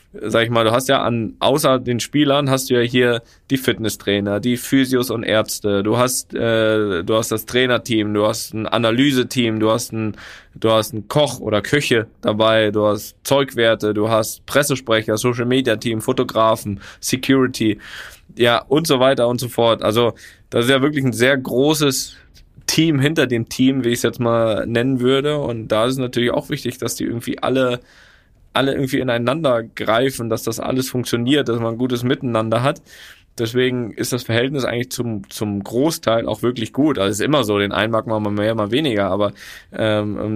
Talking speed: 190 wpm